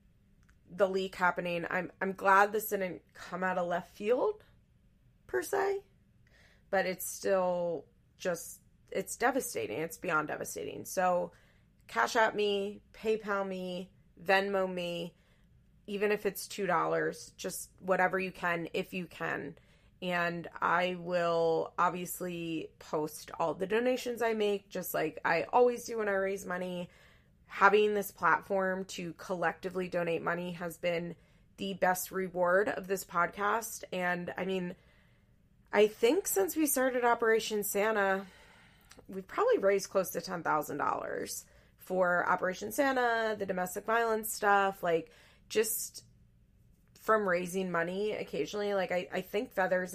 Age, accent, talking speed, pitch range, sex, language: 20-39, American, 135 wpm, 175-205 Hz, female, English